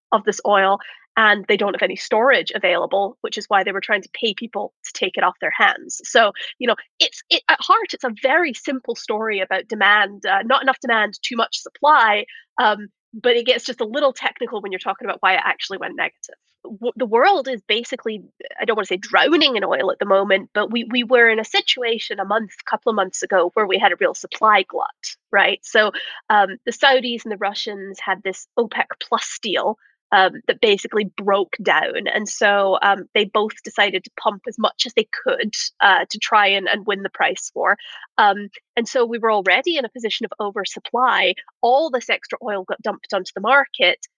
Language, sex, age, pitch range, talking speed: English, female, 20-39, 205-255 Hz, 210 wpm